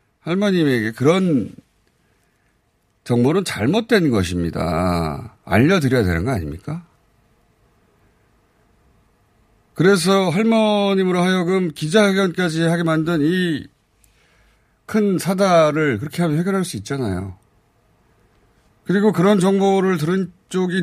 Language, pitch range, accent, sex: Korean, 110-180 Hz, native, male